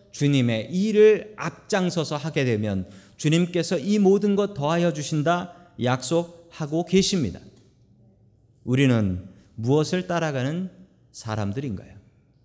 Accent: native